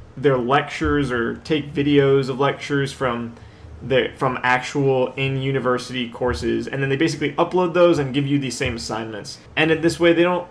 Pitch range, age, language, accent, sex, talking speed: 125-155 Hz, 20-39, English, American, male, 185 wpm